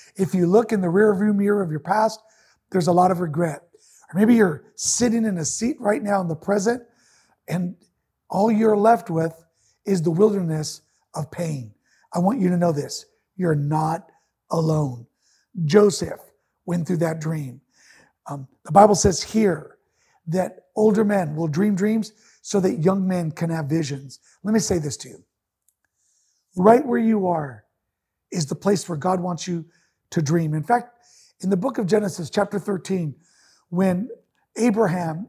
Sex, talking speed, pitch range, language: male, 170 wpm, 165-215 Hz, English